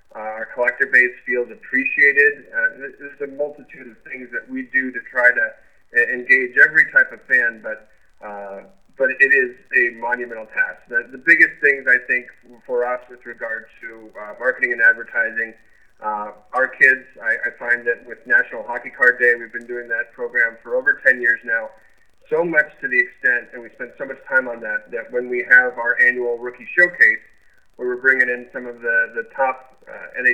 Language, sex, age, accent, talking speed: English, male, 30-49, American, 195 wpm